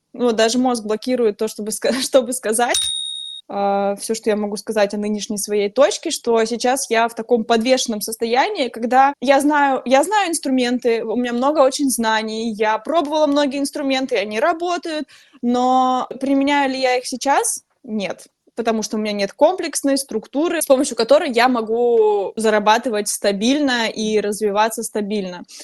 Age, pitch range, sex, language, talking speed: 20-39, 220-280 Hz, female, Russian, 155 wpm